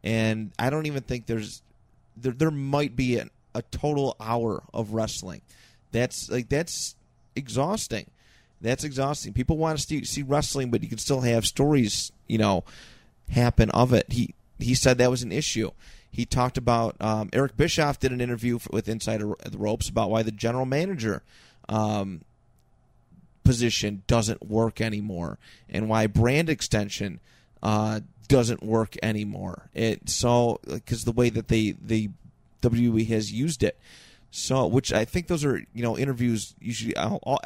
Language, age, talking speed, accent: English, 30-49, 160 wpm, American